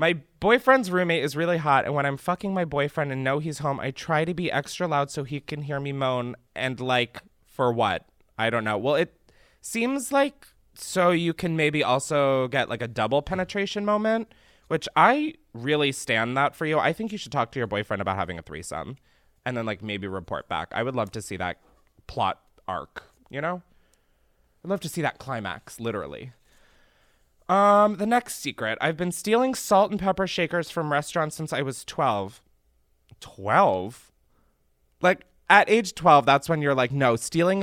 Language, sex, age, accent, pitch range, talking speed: English, male, 20-39, American, 110-175 Hz, 190 wpm